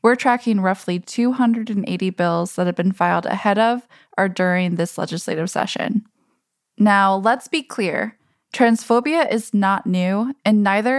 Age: 10-29